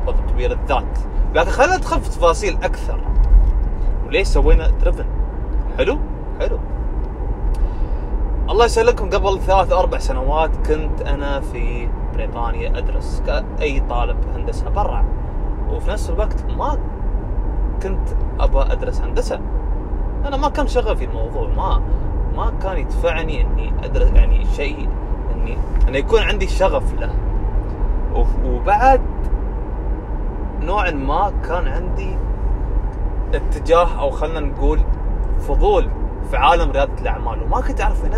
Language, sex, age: Arabic, male, 30-49